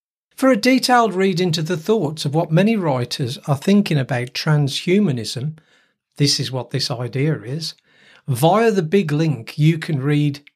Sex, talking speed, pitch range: male, 160 wpm, 140-180 Hz